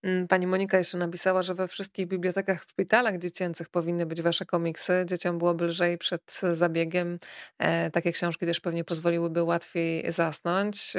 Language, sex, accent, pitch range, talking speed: Polish, female, native, 175-210 Hz, 145 wpm